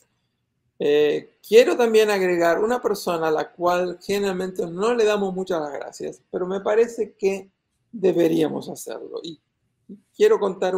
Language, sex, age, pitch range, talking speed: Spanish, male, 50-69, 160-210 Hz, 135 wpm